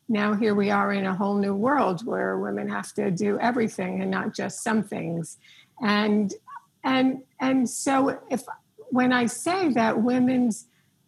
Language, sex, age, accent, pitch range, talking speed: English, female, 60-79, American, 205-260 Hz, 160 wpm